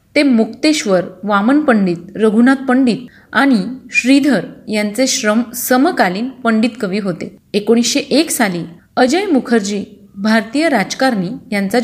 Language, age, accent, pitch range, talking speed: Marathi, 30-49, native, 205-265 Hz, 110 wpm